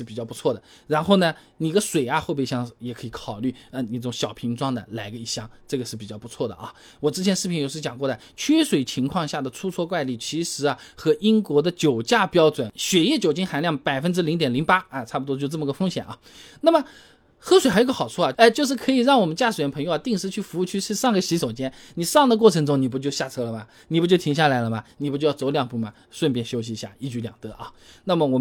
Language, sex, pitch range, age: Chinese, male, 125-180 Hz, 20-39